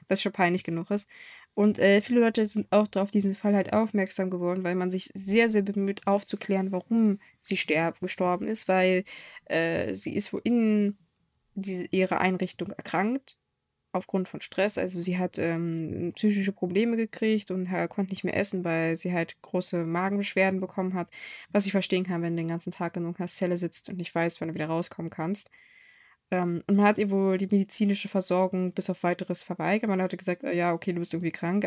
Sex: female